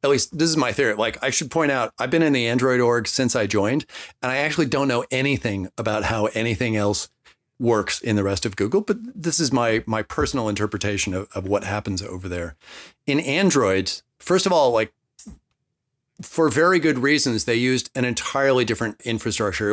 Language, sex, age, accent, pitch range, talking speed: English, male, 40-59, American, 105-130 Hz, 200 wpm